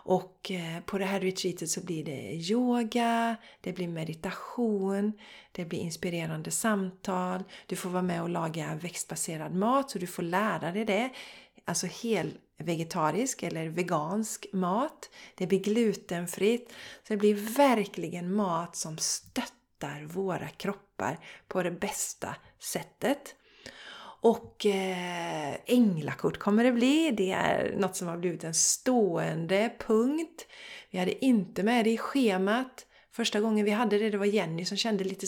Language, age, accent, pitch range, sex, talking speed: Swedish, 30-49, native, 180-225 Hz, female, 145 wpm